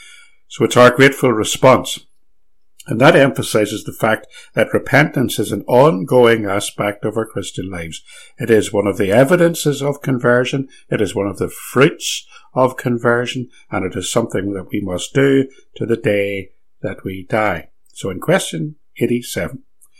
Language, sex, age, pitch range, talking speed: English, male, 60-79, 100-125 Hz, 160 wpm